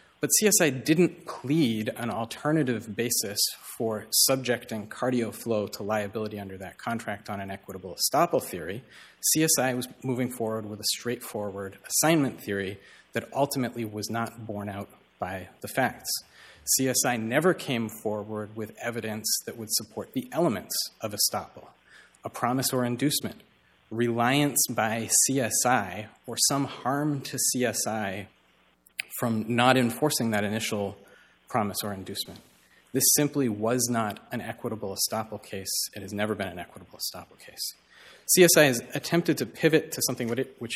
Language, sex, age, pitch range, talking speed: English, male, 30-49, 105-130 Hz, 140 wpm